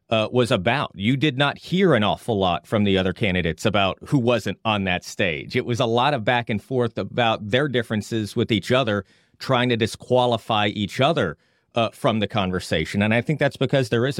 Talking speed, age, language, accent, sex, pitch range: 210 wpm, 30-49, English, American, male, 100-125 Hz